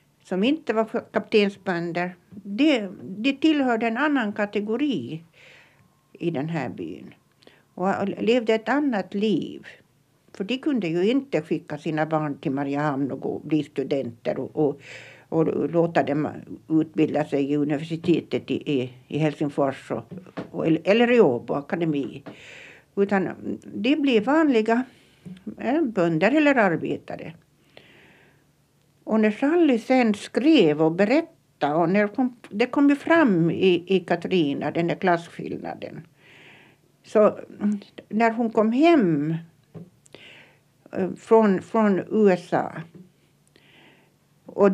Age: 60-79